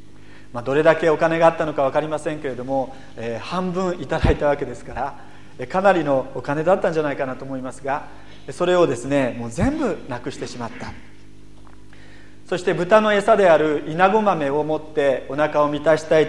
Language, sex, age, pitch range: Japanese, male, 40-59, 125-185 Hz